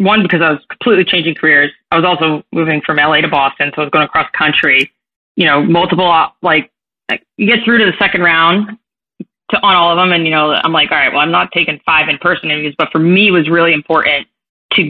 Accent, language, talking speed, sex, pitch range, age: American, English, 245 wpm, female, 150-185 Hz, 20-39